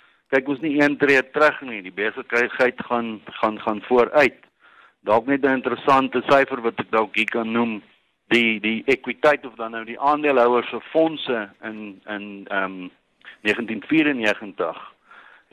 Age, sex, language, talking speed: 50-69, male, English, 150 wpm